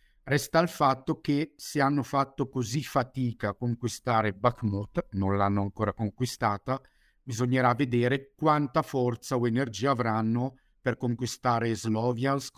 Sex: male